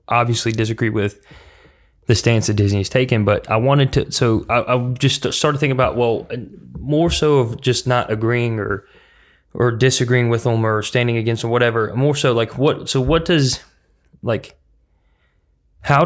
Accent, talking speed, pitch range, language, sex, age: American, 170 wpm, 110-125 Hz, English, male, 20-39